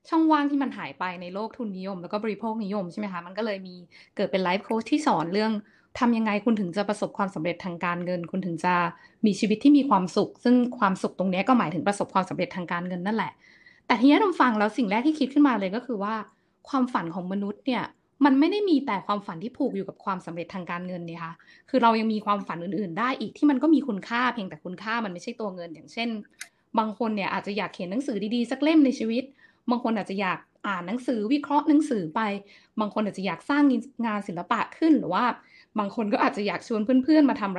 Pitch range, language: 185-250 Hz, Thai